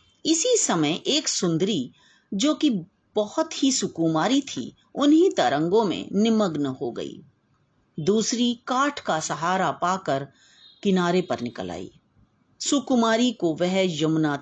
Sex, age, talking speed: female, 40-59, 120 wpm